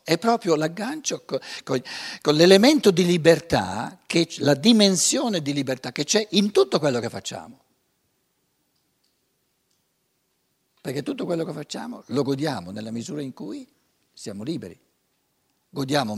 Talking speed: 120 wpm